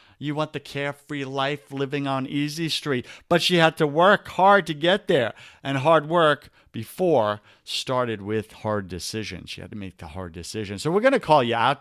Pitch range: 120-170 Hz